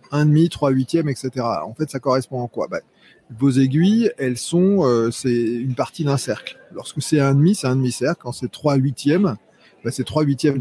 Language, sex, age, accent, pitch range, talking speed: French, male, 30-49, French, 120-150 Hz, 215 wpm